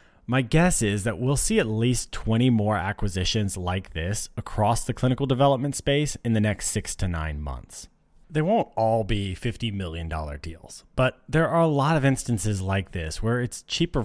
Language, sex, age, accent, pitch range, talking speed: English, male, 30-49, American, 95-130 Hz, 190 wpm